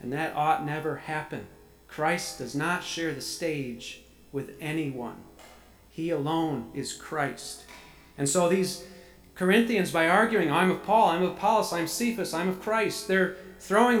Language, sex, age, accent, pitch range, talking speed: English, male, 40-59, American, 155-185 Hz, 155 wpm